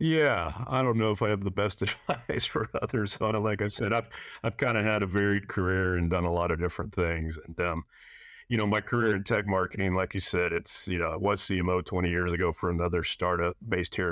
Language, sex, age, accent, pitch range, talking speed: English, male, 40-59, American, 90-105 Hz, 245 wpm